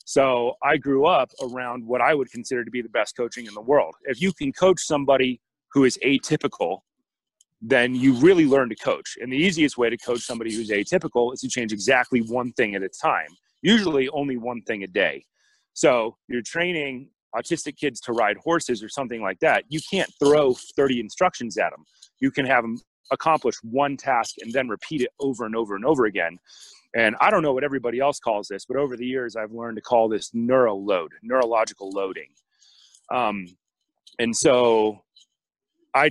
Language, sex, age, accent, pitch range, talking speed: English, male, 30-49, American, 115-145 Hz, 195 wpm